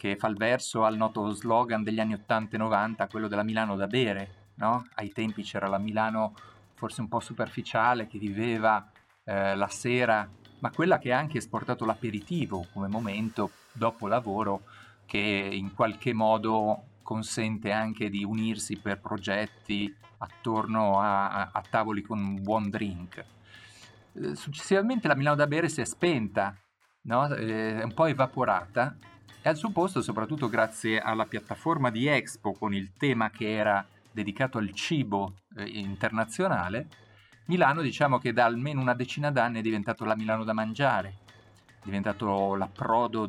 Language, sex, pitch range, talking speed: Italian, male, 105-125 Hz, 155 wpm